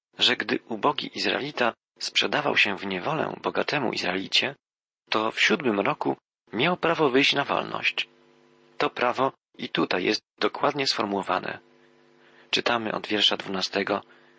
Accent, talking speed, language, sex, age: native, 125 wpm, Polish, male, 40-59